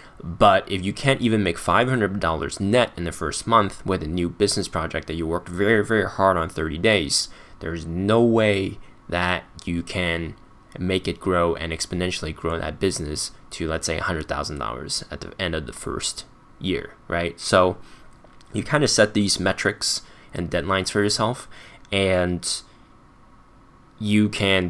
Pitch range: 85-105 Hz